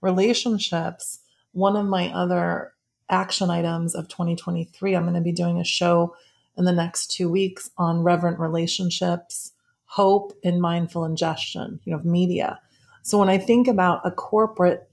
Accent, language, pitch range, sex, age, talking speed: American, English, 175-205 Hz, female, 30-49, 160 wpm